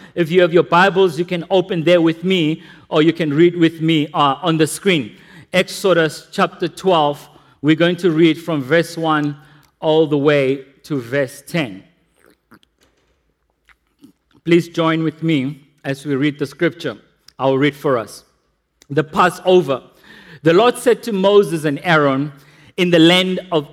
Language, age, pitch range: English, 50-69, 155-195 Hz